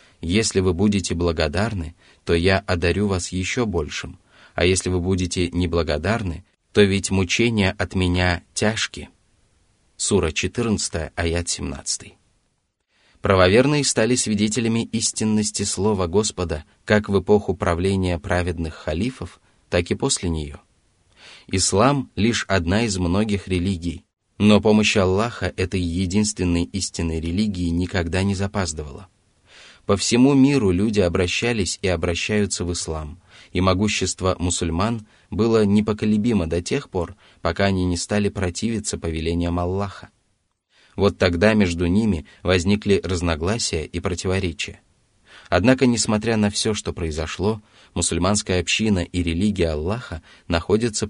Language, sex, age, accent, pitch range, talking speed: Russian, male, 30-49, native, 85-105 Hz, 120 wpm